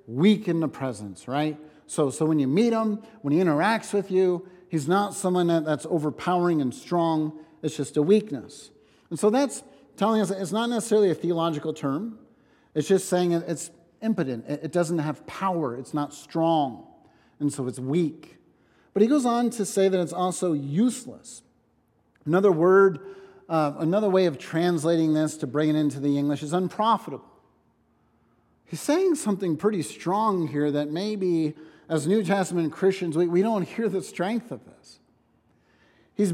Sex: male